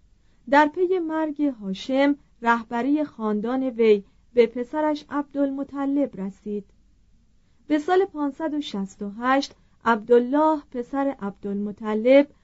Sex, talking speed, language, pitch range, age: female, 80 wpm, Persian, 210-275 Hz, 40-59